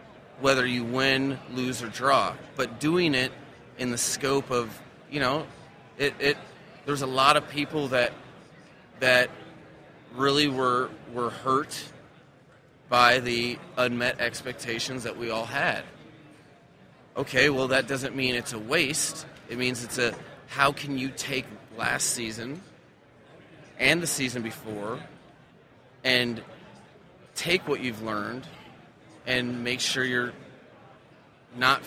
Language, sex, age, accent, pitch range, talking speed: English, male, 30-49, American, 125-145 Hz, 130 wpm